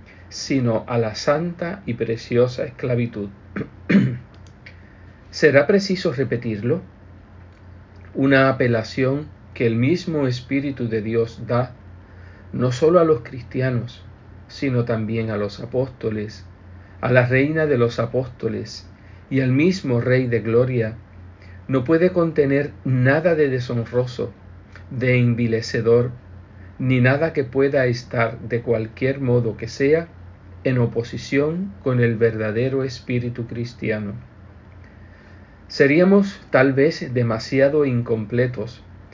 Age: 50-69